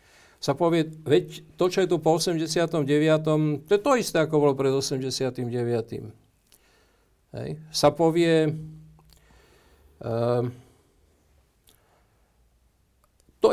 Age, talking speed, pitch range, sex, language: 50-69, 100 wpm, 120-155 Hz, male, Slovak